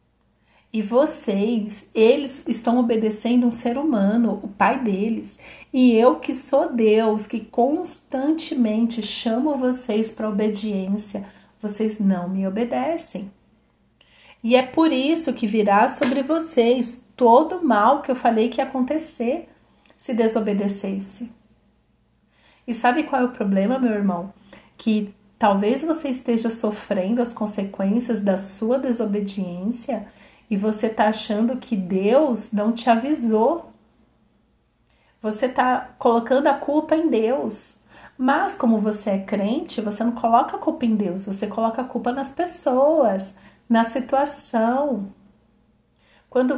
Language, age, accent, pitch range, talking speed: Portuguese, 40-59, Brazilian, 215-265 Hz, 130 wpm